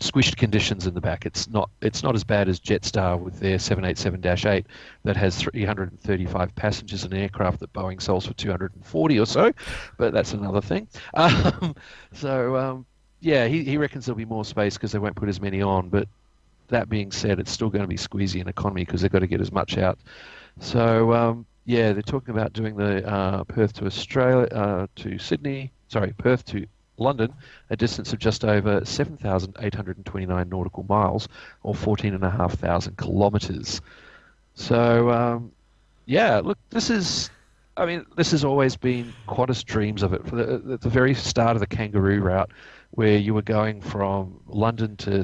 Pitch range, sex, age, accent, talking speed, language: 95-115 Hz, male, 40-59, Australian, 175 wpm, English